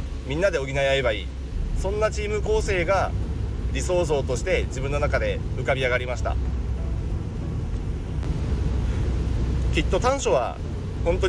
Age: 40-59